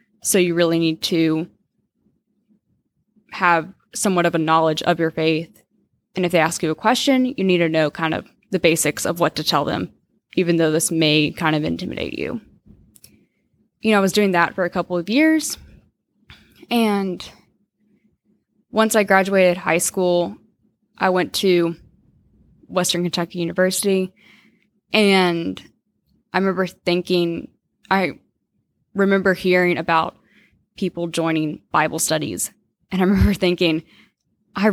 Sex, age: female, 10-29